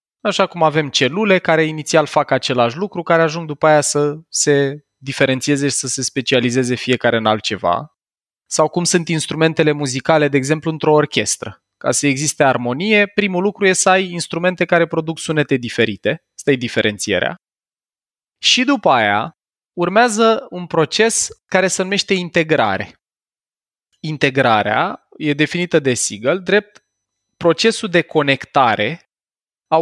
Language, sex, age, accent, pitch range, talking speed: Romanian, male, 20-39, native, 130-175 Hz, 135 wpm